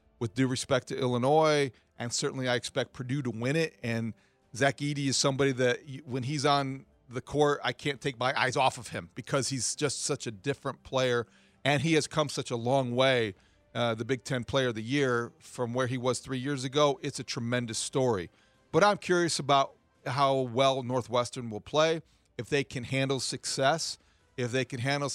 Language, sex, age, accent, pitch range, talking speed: English, male, 40-59, American, 120-140 Hz, 200 wpm